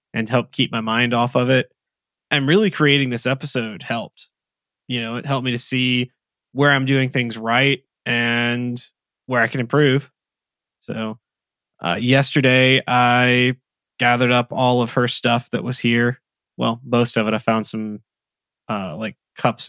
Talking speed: 165 wpm